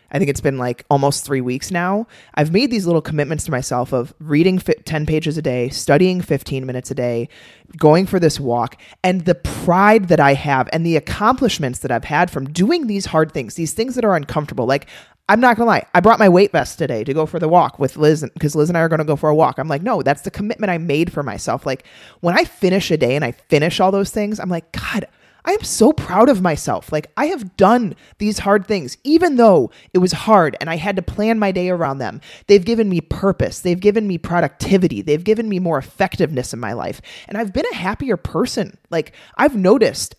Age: 20-39